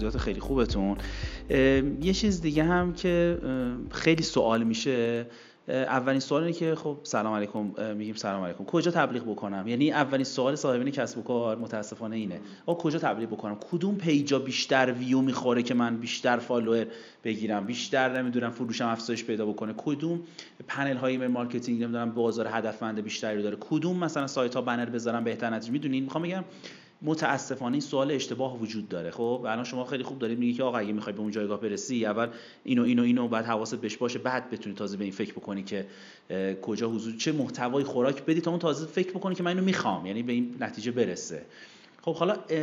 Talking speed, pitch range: 185 wpm, 110-155 Hz